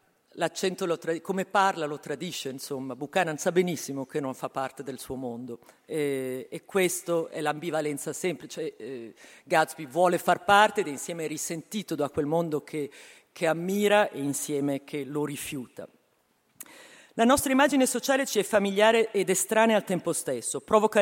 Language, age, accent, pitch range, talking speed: Italian, 40-59, native, 155-220 Hz, 155 wpm